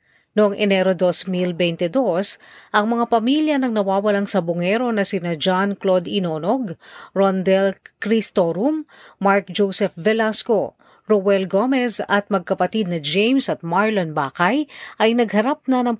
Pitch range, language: 175-230 Hz, Filipino